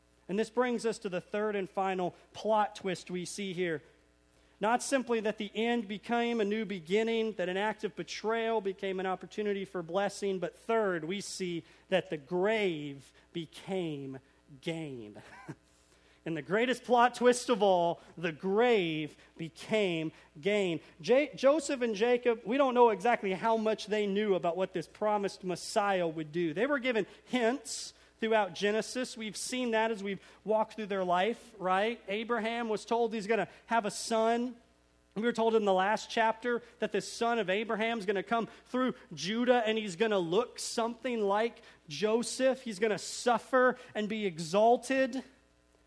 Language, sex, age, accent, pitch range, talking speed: English, male, 40-59, American, 180-235 Hz, 170 wpm